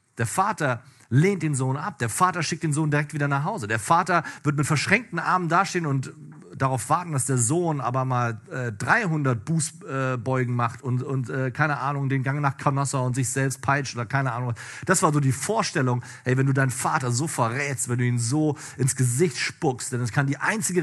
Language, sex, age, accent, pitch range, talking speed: German, male, 40-59, German, 115-150 Hz, 215 wpm